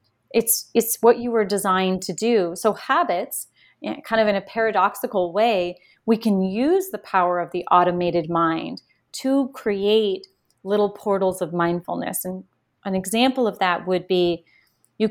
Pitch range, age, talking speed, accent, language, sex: 175-215 Hz, 30-49, 165 wpm, American, English, female